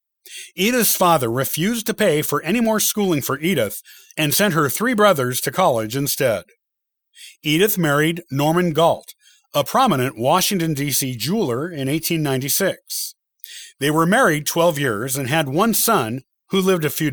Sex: male